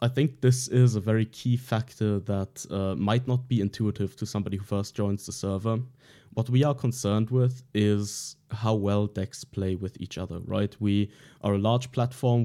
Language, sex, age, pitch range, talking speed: English, male, 20-39, 100-130 Hz, 195 wpm